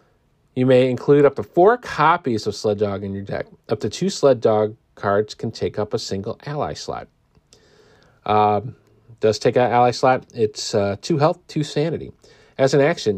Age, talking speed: 40-59, 185 wpm